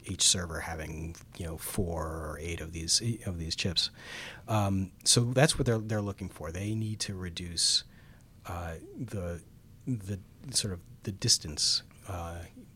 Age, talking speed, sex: 30-49, 155 wpm, male